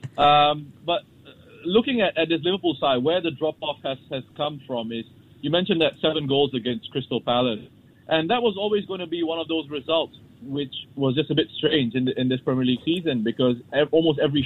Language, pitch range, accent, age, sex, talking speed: English, 125-150 Hz, Malaysian, 20-39, male, 210 wpm